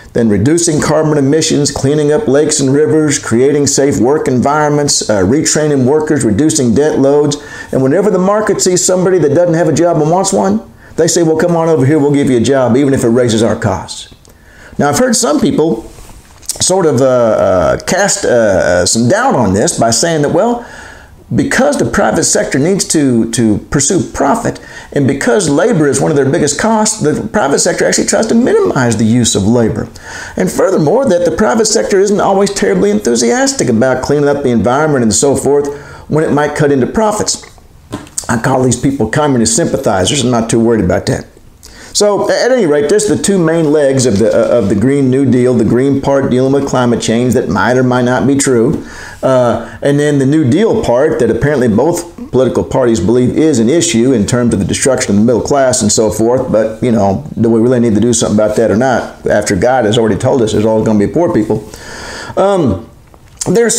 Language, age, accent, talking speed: English, 50-69, American, 210 wpm